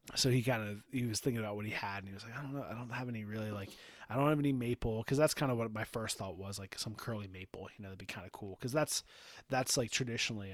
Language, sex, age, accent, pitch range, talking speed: English, male, 30-49, American, 100-120 Hz, 305 wpm